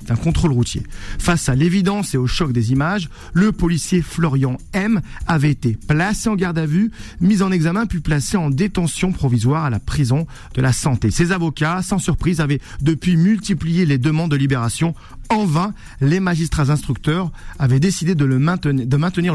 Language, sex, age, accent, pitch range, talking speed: French, male, 40-59, French, 145-205 Hz, 185 wpm